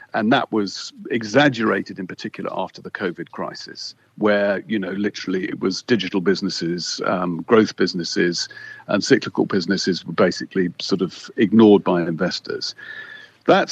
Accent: British